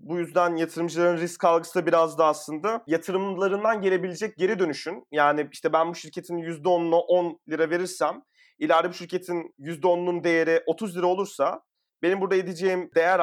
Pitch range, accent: 150-185 Hz, native